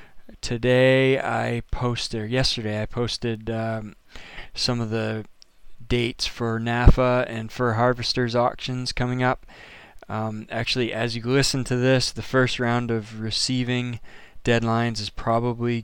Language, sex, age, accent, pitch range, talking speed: English, male, 20-39, American, 115-125 Hz, 135 wpm